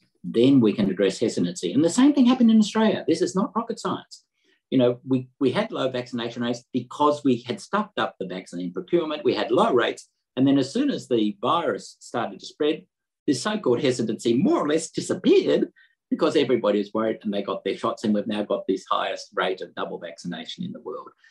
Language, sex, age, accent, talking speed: English, male, 50-69, Australian, 215 wpm